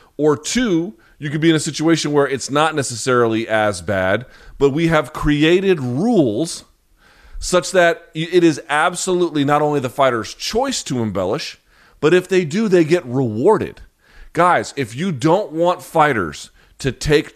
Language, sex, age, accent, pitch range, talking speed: English, male, 40-59, American, 135-180 Hz, 160 wpm